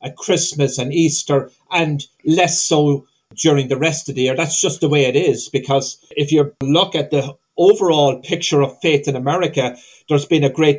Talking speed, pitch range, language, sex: 195 wpm, 135-165 Hz, English, male